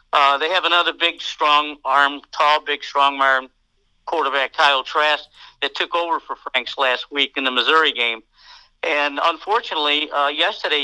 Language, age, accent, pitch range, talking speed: English, 60-79, American, 135-160 Hz, 160 wpm